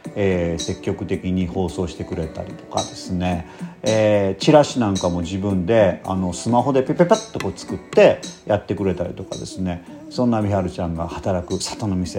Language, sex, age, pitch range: Japanese, male, 40-59, 95-145 Hz